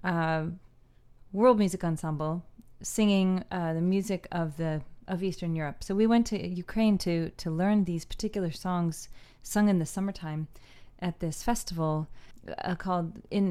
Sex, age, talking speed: female, 30-49, 150 wpm